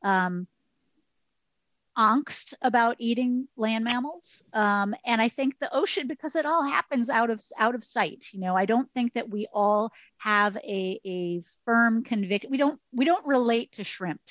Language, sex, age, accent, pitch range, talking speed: English, female, 30-49, American, 195-245 Hz, 170 wpm